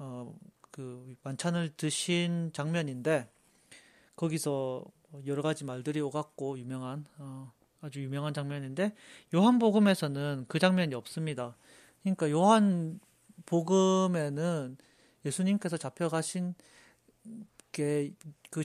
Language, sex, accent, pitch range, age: Korean, male, native, 145-185 Hz, 40-59